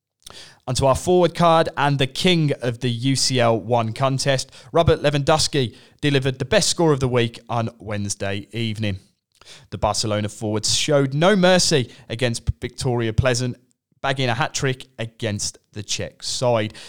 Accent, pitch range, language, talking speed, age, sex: British, 115-145 Hz, English, 140 wpm, 30-49, male